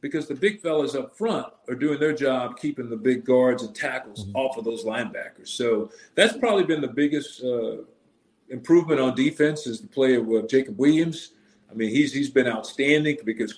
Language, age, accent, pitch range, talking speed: English, 50-69, American, 125-170 Hz, 195 wpm